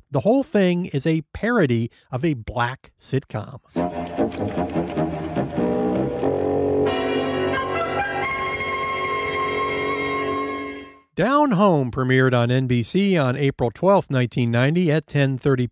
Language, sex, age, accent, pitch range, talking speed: English, male, 50-69, American, 125-175 Hz, 80 wpm